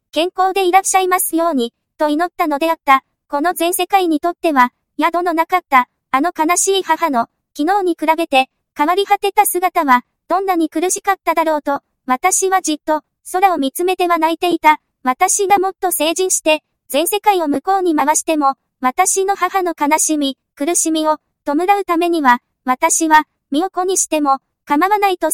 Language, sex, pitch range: English, male, 300-370 Hz